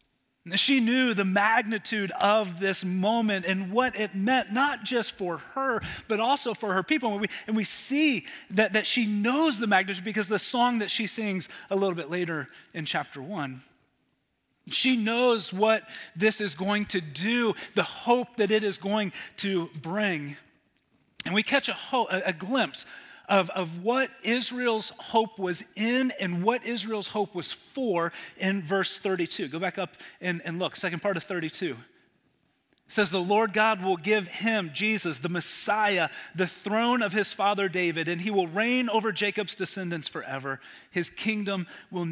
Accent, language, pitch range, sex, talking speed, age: American, English, 180-220 Hz, male, 170 wpm, 30-49